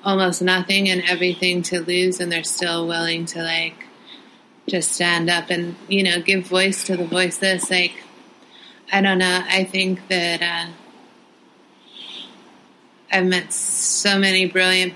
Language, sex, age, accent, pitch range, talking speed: English, female, 30-49, American, 175-185 Hz, 145 wpm